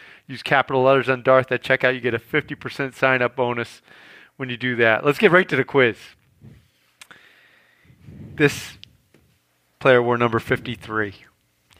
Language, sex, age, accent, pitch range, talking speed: English, male, 40-59, American, 120-155 Hz, 140 wpm